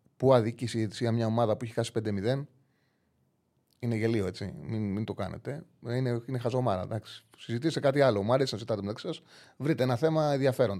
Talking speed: 185 wpm